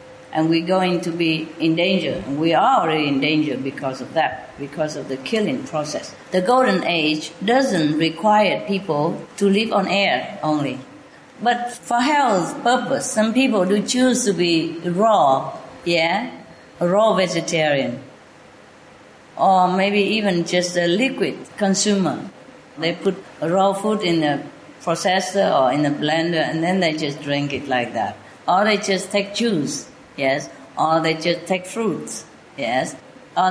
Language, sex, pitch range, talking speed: English, female, 155-195 Hz, 150 wpm